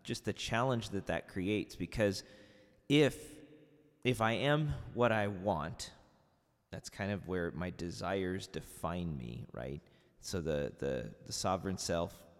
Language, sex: English, male